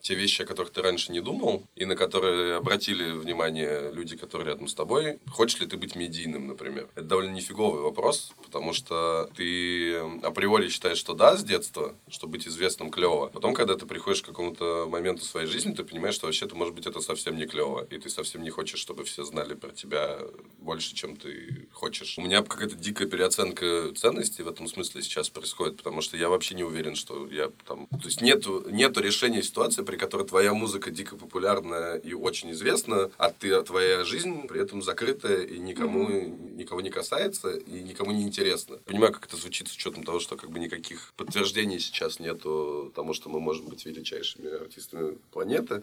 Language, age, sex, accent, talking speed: Russian, 20-39, male, native, 195 wpm